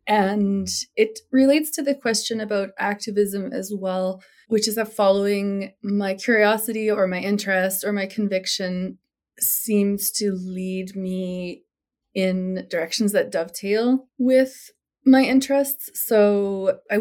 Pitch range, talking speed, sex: 185-220 Hz, 125 wpm, female